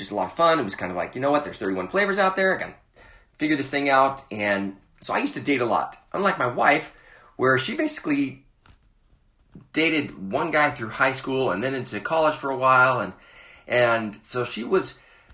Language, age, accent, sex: English, 30-49, American, male